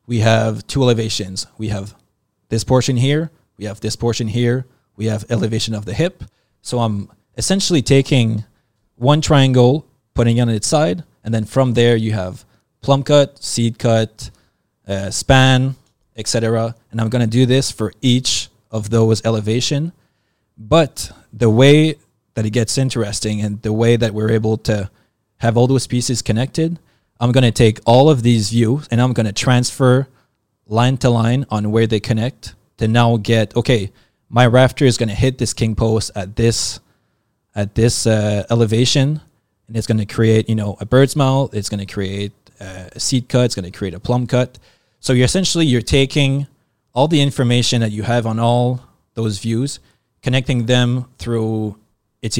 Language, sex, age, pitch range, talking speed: English, male, 20-39, 110-130 Hz, 170 wpm